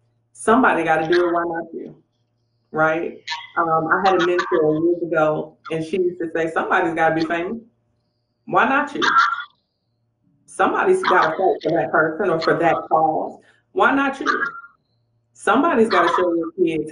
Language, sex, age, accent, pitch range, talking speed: English, female, 30-49, American, 155-205 Hz, 175 wpm